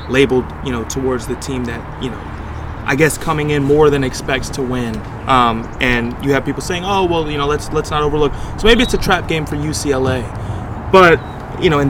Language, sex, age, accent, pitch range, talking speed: English, male, 20-39, American, 125-155 Hz, 220 wpm